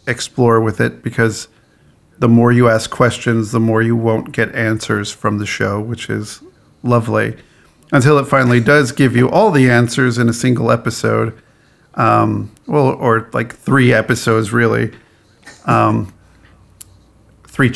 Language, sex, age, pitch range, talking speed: English, male, 50-69, 110-125 Hz, 145 wpm